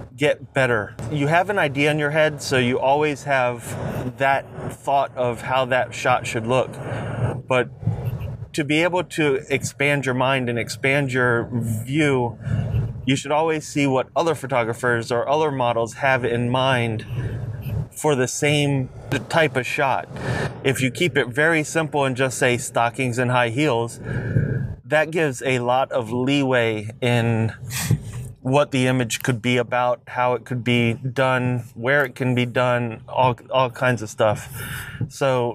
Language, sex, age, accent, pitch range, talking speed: English, male, 30-49, American, 120-135 Hz, 160 wpm